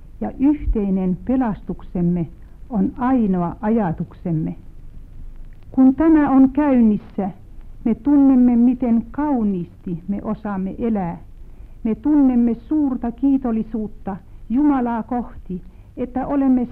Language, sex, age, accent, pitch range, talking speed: Finnish, female, 60-79, native, 185-260 Hz, 90 wpm